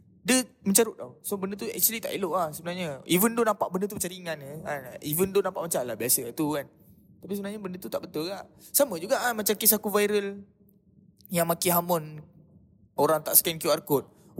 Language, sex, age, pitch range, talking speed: Malay, male, 20-39, 145-185 Hz, 210 wpm